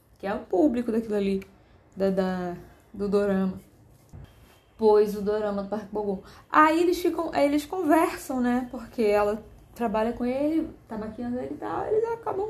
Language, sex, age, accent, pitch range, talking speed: Portuguese, female, 20-39, Brazilian, 195-250 Hz, 175 wpm